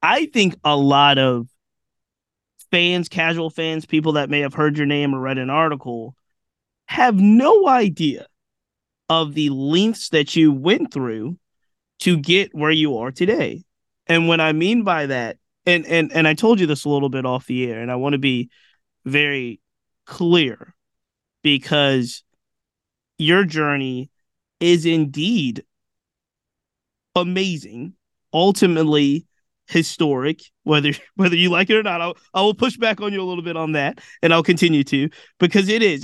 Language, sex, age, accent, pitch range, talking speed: English, male, 20-39, American, 145-180 Hz, 160 wpm